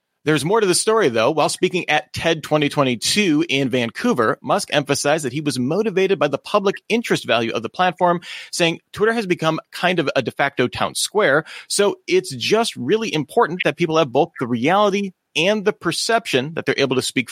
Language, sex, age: English, male, 30-49